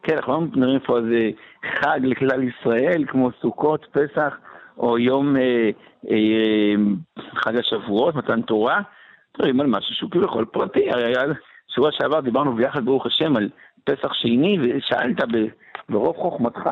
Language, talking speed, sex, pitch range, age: Hebrew, 140 wpm, male, 115-155 Hz, 60-79